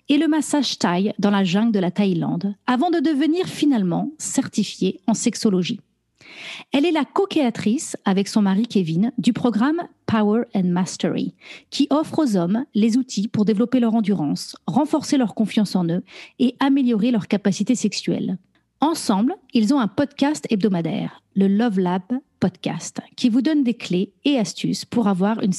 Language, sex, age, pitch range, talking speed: French, female, 40-59, 200-270 Hz, 165 wpm